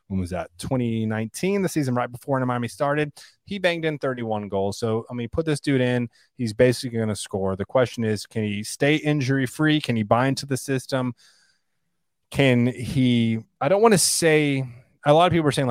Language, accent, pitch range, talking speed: English, American, 110-140 Hz, 210 wpm